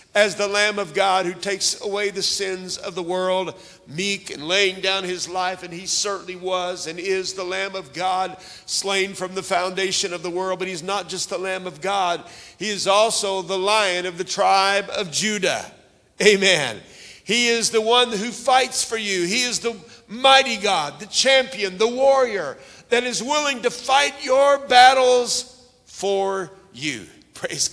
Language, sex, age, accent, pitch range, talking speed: English, male, 50-69, American, 185-240 Hz, 175 wpm